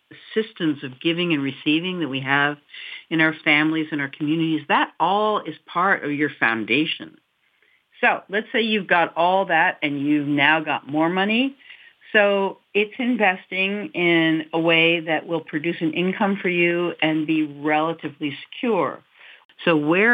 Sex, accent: female, American